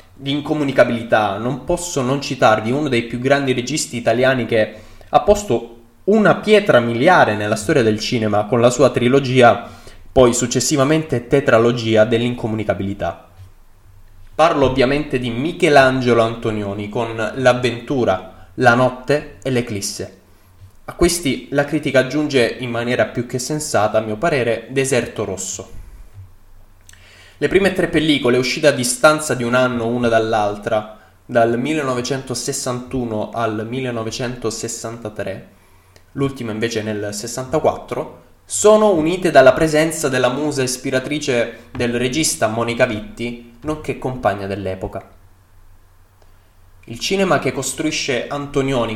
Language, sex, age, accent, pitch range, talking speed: Italian, male, 20-39, native, 110-140 Hz, 115 wpm